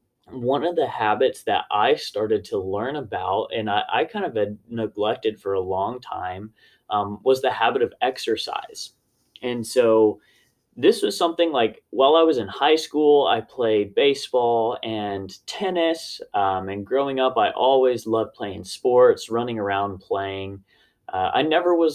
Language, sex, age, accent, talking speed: English, male, 20-39, American, 165 wpm